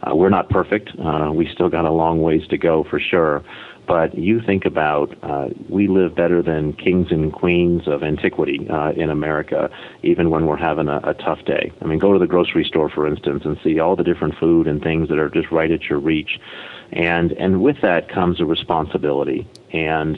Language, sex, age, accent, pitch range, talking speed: English, male, 40-59, American, 75-85 Hz, 215 wpm